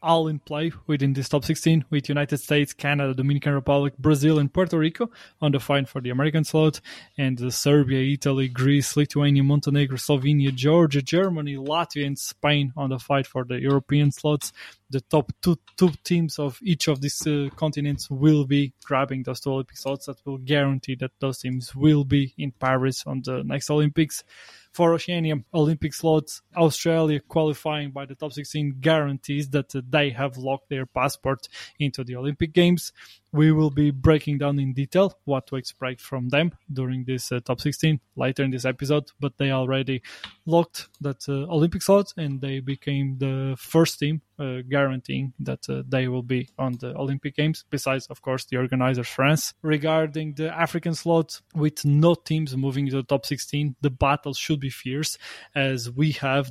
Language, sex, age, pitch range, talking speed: English, male, 20-39, 135-155 Hz, 180 wpm